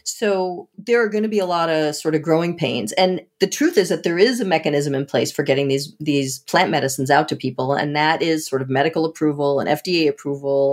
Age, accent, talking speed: 40-59, American, 240 wpm